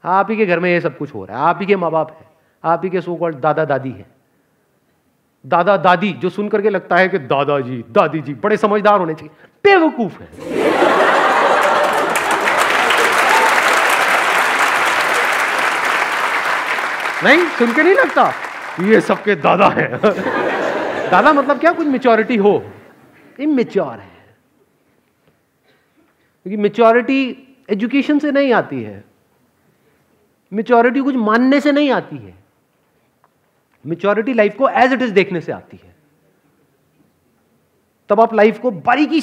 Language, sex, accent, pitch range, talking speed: Hindi, male, native, 160-240 Hz, 135 wpm